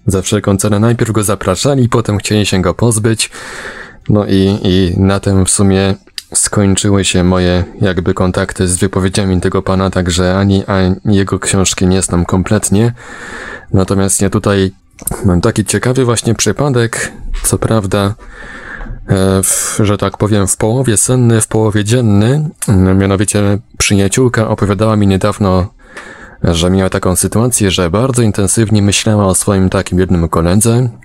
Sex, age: male, 20-39